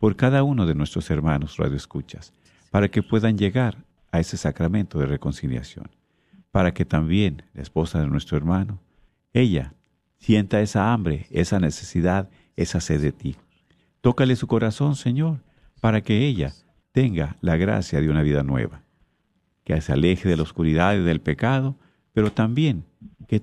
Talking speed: 155 wpm